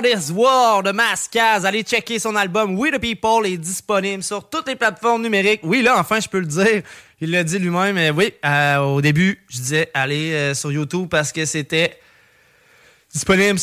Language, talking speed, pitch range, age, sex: English, 205 wpm, 160-210 Hz, 20-39, male